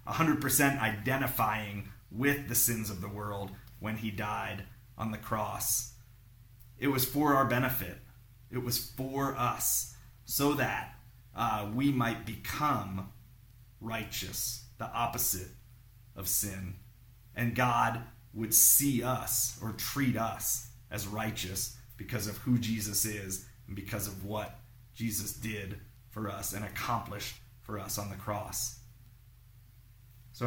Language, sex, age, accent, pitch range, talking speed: English, male, 30-49, American, 110-120 Hz, 125 wpm